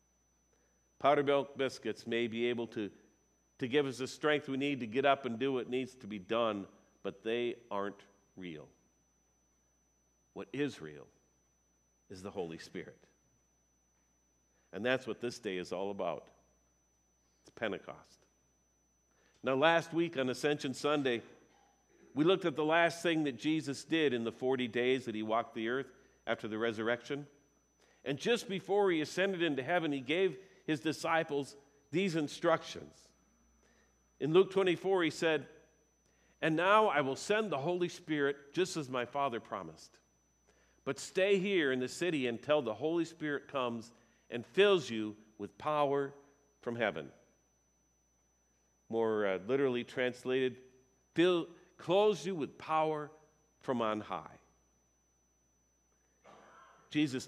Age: 50-69